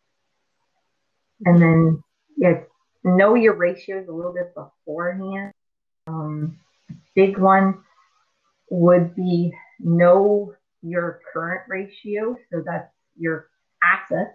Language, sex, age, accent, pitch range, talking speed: English, female, 30-49, American, 165-195 Hz, 100 wpm